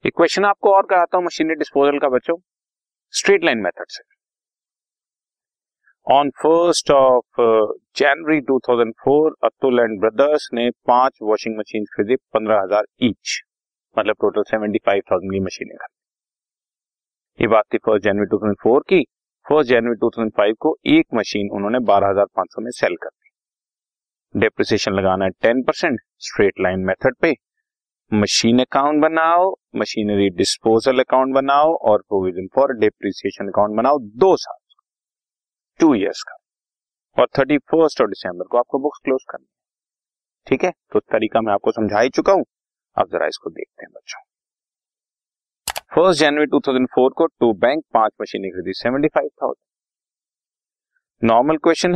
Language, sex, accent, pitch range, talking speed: Hindi, male, native, 110-160 Hz, 135 wpm